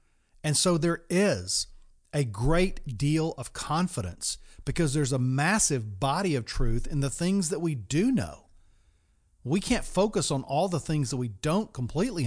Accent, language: American, English